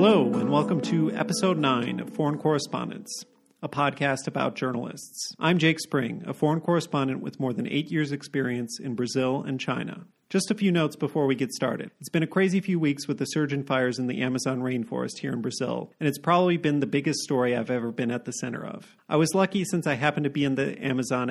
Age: 40-59